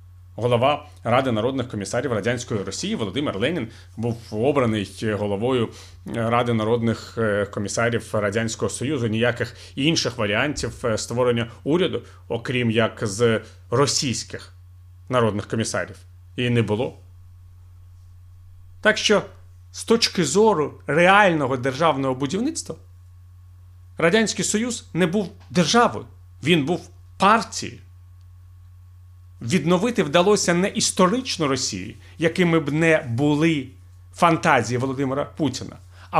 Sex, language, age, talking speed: male, Ukrainian, 40-59, 100 wpm